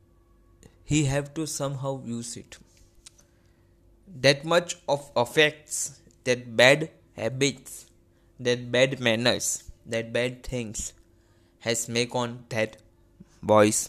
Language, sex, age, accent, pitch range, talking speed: Hindi, male, 20-39, native, 90-135 Hz, 105 wpm